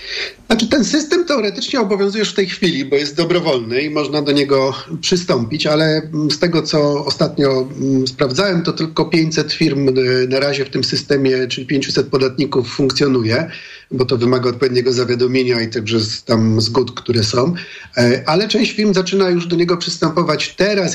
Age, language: 50-69, Polish